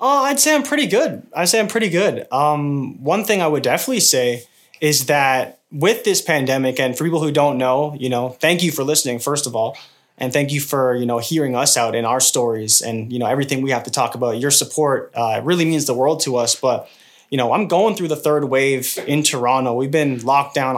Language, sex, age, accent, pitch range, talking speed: English, male, 20-39, American, 130-165 Hz, 245 wpm